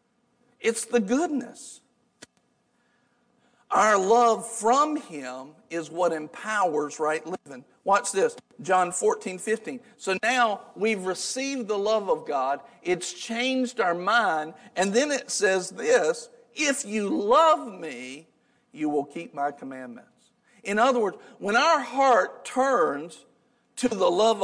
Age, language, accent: 50-69, English, American